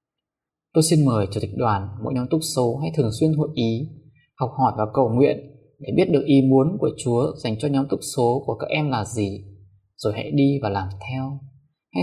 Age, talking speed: 20-39, 220 wpm